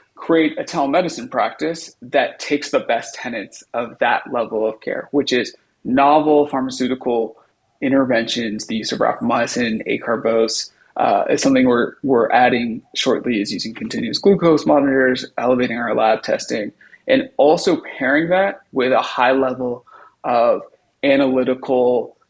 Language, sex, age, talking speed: English, male, 30-49, 135 wpm